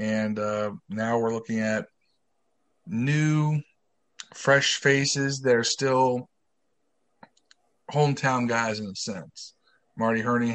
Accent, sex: American, male